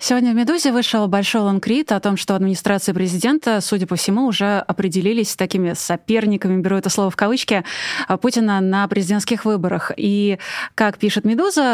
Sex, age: female, 20-39